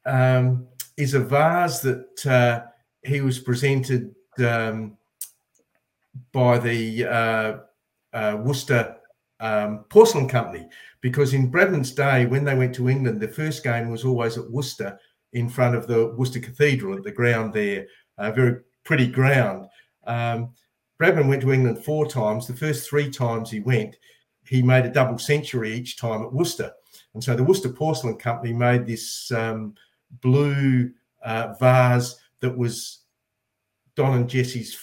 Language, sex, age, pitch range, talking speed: English, male, 50-69, 115-135 Hz, 145 wpm